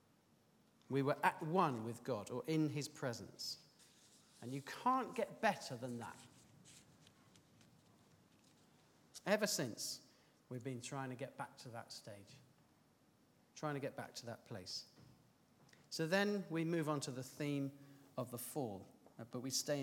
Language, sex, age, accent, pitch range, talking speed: English, male, 40-59, British, 130-180 Hz, 150 wpm